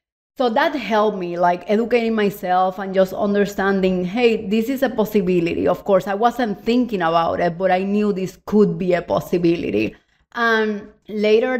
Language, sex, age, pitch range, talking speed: English, female, 30-49, 175-215 Hz, 165 wpm